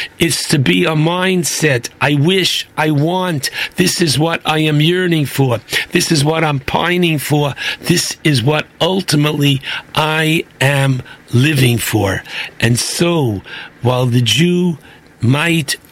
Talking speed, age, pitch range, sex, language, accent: 135 wpm, 60-79, 120-155 Hz, male, English, American